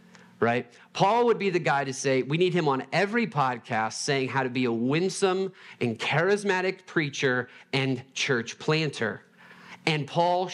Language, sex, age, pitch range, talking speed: English, male, 40-59, 120-160 Hz, 160 wpm